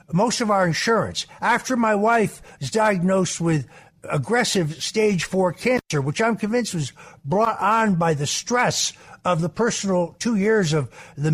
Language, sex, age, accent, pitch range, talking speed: English, male, 60-79, American, 170-230 Hz, 160 wpm